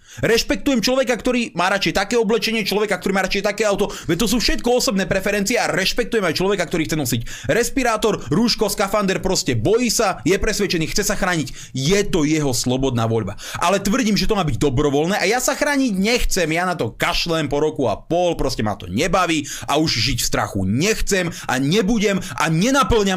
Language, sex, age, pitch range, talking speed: Slovak, male, 30-49, 130-205 Hz, 195 wpm